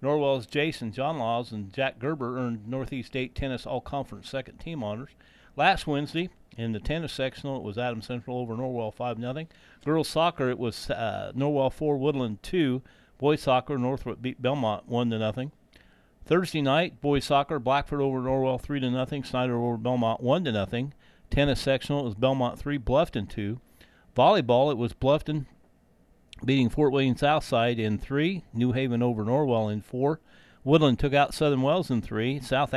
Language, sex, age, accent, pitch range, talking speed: English, male, 40-59, American, 120-145 Hz, 160 wpm